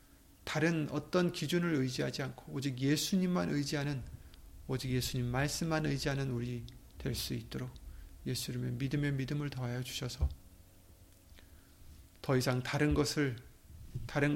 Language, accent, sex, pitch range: Korean, native, male, 105-145 Hz